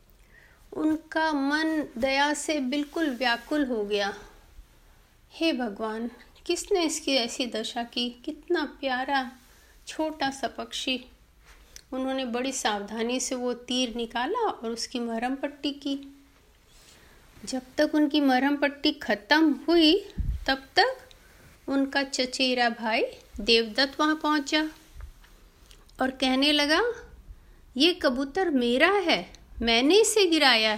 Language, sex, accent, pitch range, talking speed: Hindi, female, native, 245-315 Hz, 110 wpm